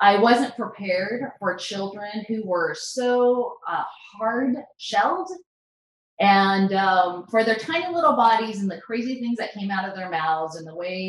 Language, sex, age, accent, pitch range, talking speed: English, female, 30-49, American, 165-230 Hz, 170 wpm